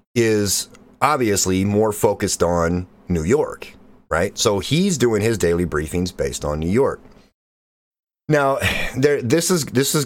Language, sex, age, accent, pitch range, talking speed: English, male, 30-49, American, 85-120 Hz, 145 wpm